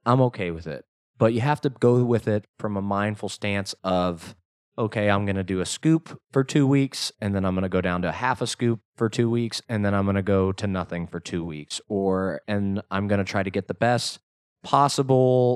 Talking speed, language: 230 wpm, English